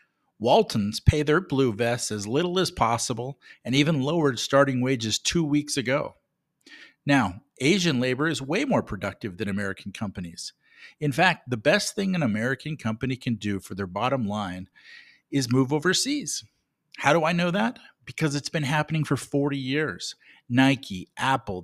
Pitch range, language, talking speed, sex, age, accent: 110-150 Hz, English, 160 wpm, male, 50-69, American